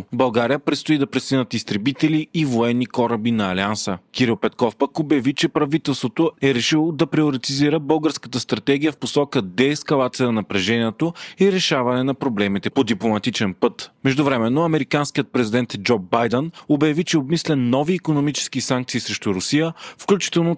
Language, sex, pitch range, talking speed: Bulgarian, male, 120-150 Hz, 145 wpm